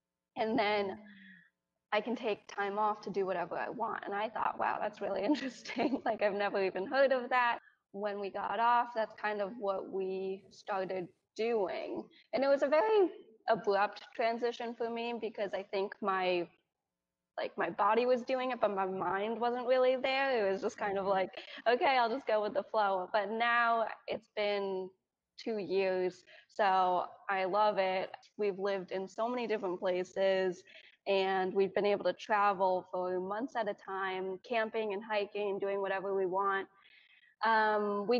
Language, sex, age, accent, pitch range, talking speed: English, female, 20-39, American, 190-230 Hz, 175 wpm